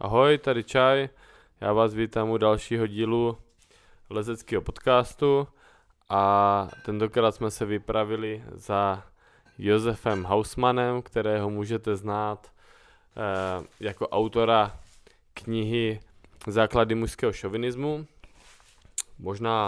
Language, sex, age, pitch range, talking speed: Czech, male, 20-39, 100-115 Hz, 90 wpm